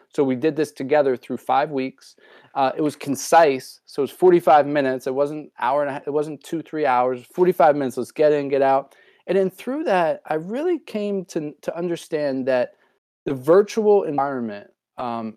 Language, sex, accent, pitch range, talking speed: English, male, American, 135-175 Hz, 195 wpm